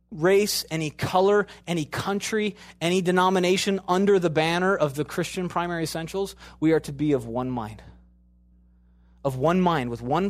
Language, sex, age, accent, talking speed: English, male, 30-49, American, 155 wpm